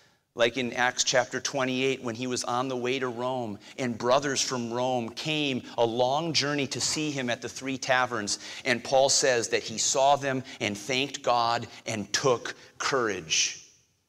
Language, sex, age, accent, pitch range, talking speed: English, male, 40-59, American, 105-130 Hz, 175 wpm